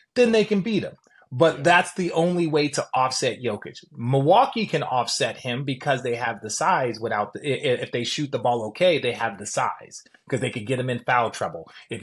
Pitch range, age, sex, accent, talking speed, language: 120-170 Hz, 30-49, male, American, 215 wpm, English